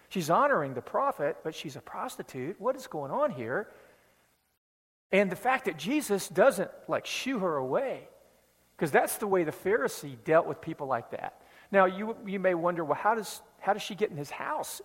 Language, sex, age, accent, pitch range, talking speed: English, male, 50-69, American, 155-215 Hz, 200 wpm